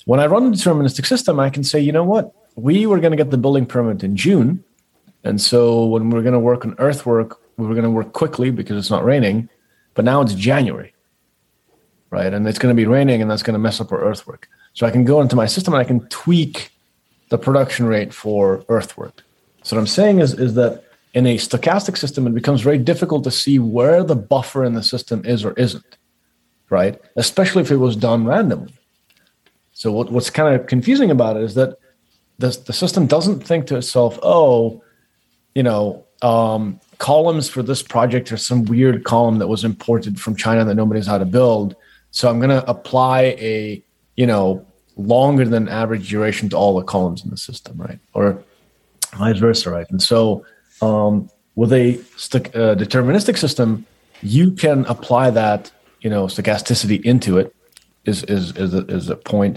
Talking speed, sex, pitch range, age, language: 195 wpm, male, 110-135 Hz, 30-49, English